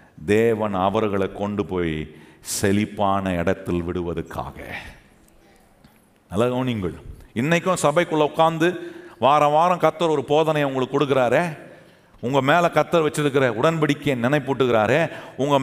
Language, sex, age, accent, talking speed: Tamil, male, 40-59, native, 105 wpm